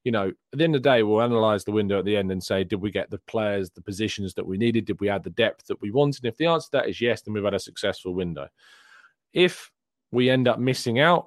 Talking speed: 295 wpm